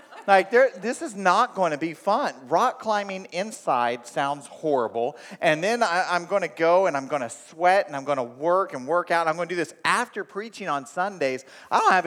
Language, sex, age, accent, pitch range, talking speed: English, male, 40-59, American, 155-210 Hz, 235 wpm